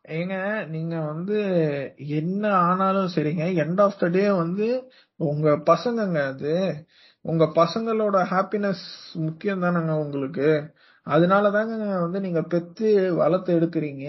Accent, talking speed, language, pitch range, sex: native, 110 wpm, Tamil, 165-210 Hz, male